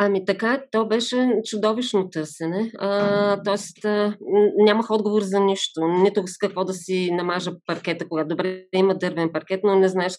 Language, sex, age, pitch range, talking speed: Bulgarian, female, 20-39, 180-210 Hz, 155 wpm